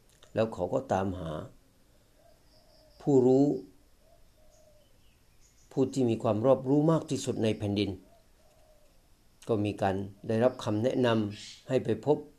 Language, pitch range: Thai, 100-125 Hz